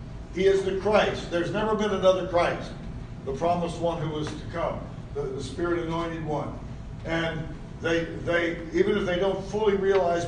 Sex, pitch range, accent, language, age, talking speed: male, 145-190 Hz, American, English, 60-79, 170 wpm